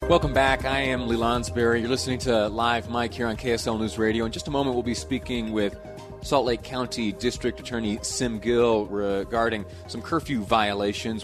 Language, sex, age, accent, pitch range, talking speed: English, male, 30-49, American, 100-120 Hz, 185 wpm